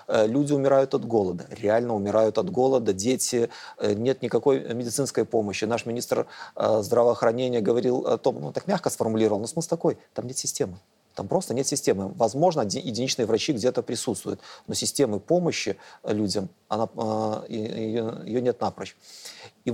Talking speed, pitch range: 150 wpm, 110-130 Hz